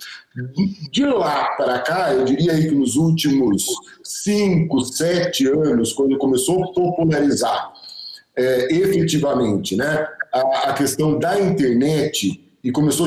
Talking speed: 115 wpm